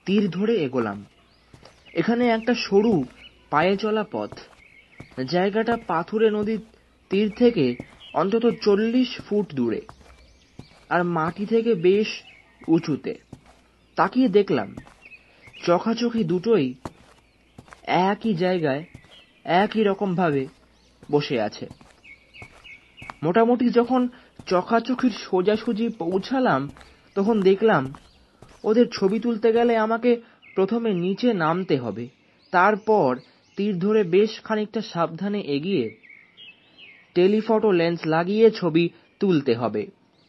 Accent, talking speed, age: native, 90 wpm, 30-49